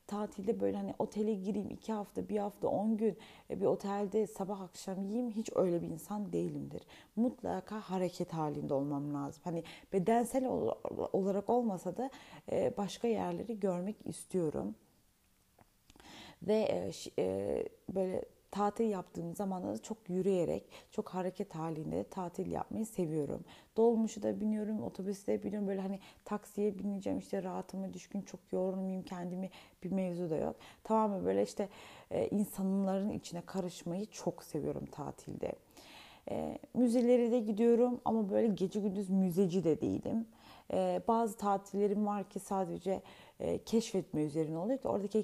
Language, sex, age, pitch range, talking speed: Turkish, female, 30-49, 180-220 Hz, 135 wpm